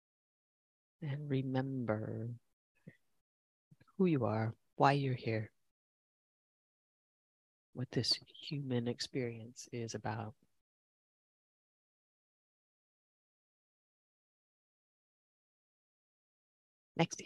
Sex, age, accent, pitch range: female, 40-59, American, 125-160 Hz